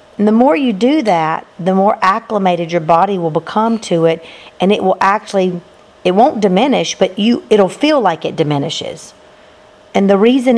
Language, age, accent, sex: English, 50-69, American, female